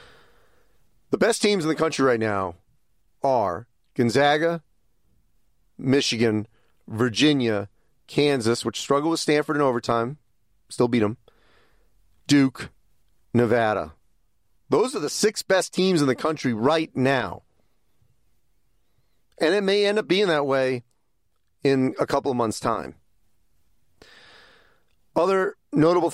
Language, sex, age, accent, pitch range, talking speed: English, male, 40-59, American, 115-160 Hz, 115 wpm